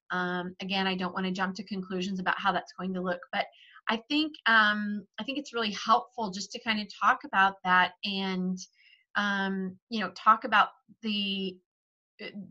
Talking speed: 180 wpm